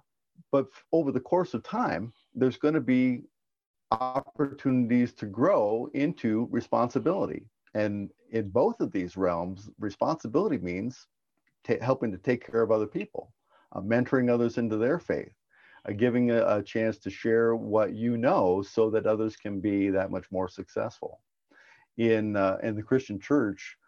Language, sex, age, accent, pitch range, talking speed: English, male, 50-69, American, 95-120 Hz, 155 wpm